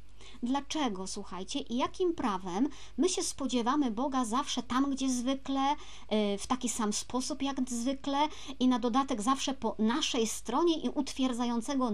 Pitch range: 210-255 Hz